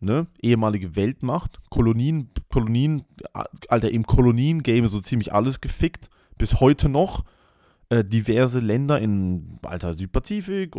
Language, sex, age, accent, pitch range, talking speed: English, male, 30-49, German, 100-150 Hz, 110 wpm